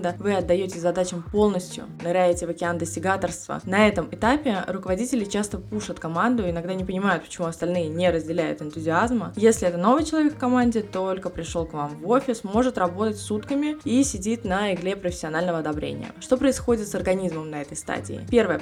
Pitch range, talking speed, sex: 175-220 Hz, 170 wpm, female